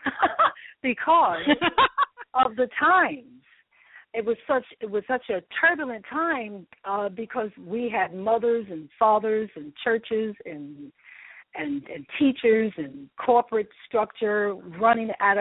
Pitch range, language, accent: 180-220 Hz, English, American